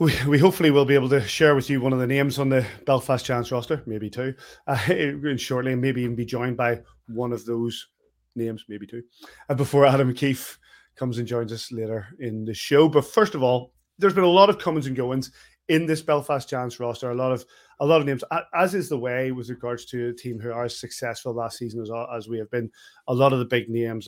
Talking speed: 240 wpm